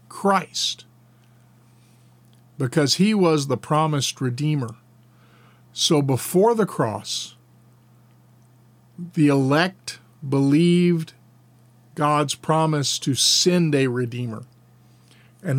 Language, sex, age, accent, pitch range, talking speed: English, male, 50-69, American, 120-145 Hz, 80 wpm